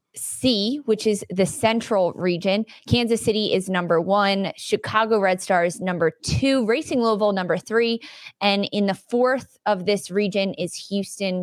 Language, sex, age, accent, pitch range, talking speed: English, female, 20-39, American, 180-220 Hz, 150 wpm